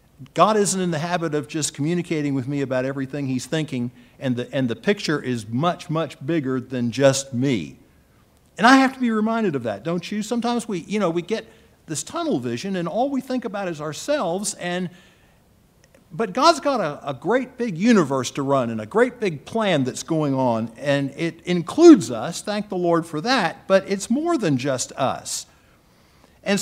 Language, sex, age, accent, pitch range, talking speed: English, male, 50-69, American, 140-195 Hz, 195 wpm